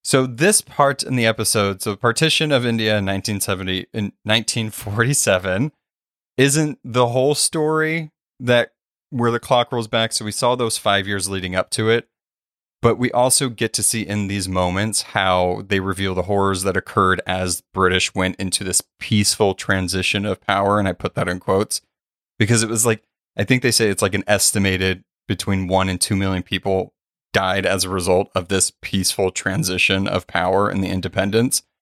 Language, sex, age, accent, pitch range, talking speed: English, male, 30-49, American, 95-120 Hz, 180 wpm